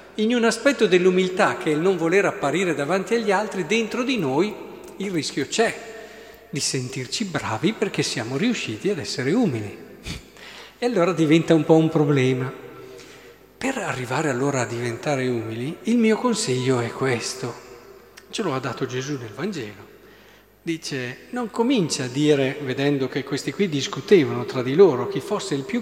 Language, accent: Italian, native